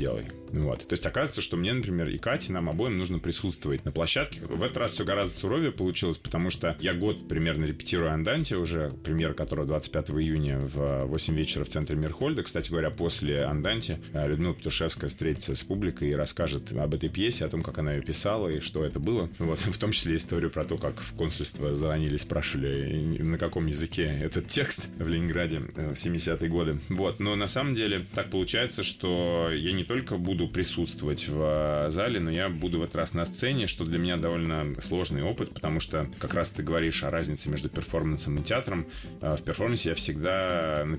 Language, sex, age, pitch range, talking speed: Russian, male, 20-39, 75-90 Hz, 195 wpm